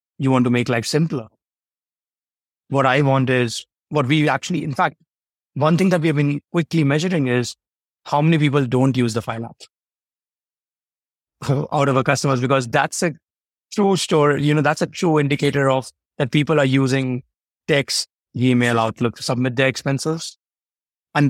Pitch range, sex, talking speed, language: 120-145 Hz, male, 170 wpm, English